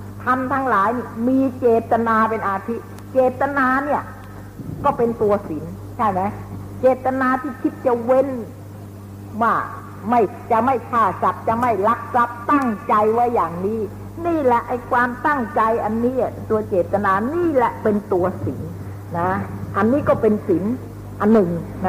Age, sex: 60-79, female